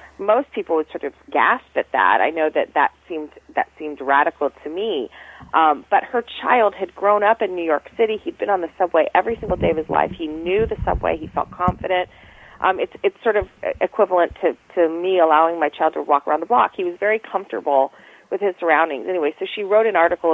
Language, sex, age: English, female, 40-59